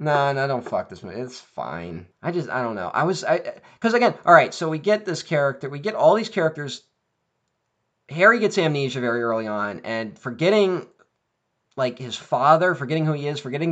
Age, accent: 20-39, American